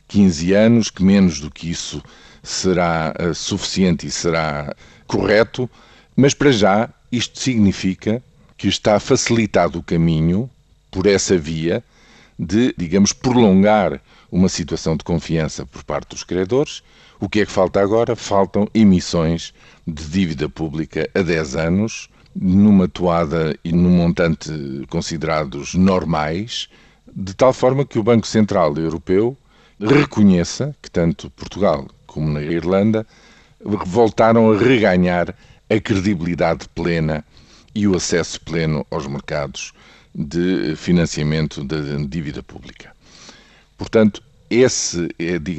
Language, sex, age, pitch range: Portuguese, male, 50-69, 85-110 Hz